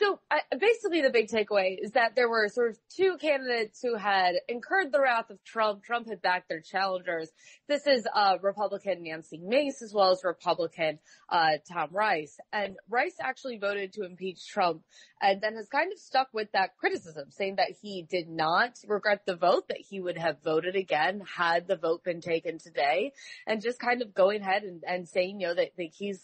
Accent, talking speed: American, 200 wpm